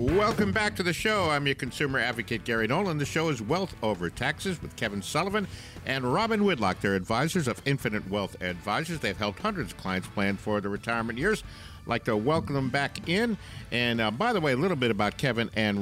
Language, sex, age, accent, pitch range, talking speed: English, male, 50-69, American, 100-140 Hz, 215 wpm